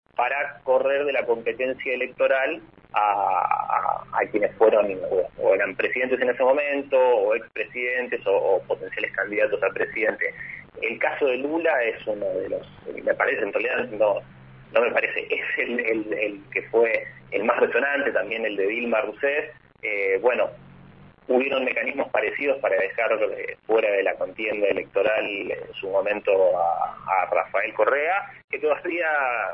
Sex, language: male, Spanish